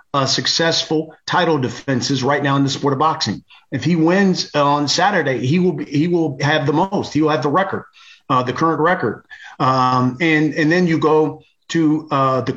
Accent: American